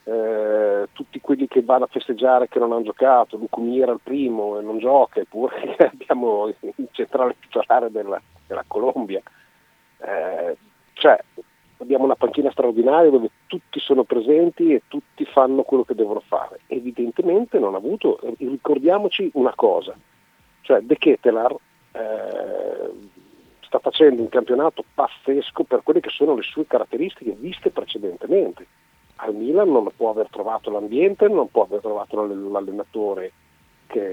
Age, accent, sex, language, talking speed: 50-69, native, male, Italian, 145 wpm